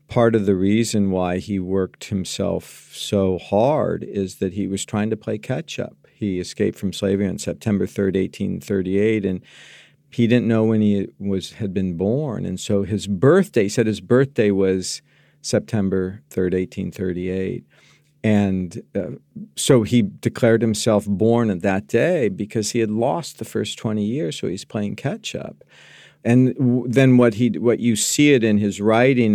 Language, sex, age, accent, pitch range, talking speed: English, male, 50-69, American, 100-125 Hz, 165 wpm